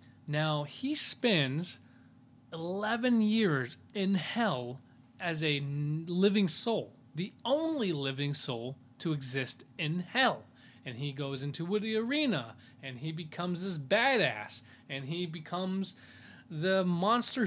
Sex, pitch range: male, 125-175 Hz